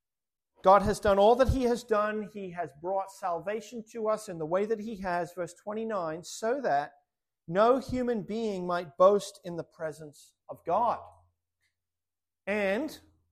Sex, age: male, 40-59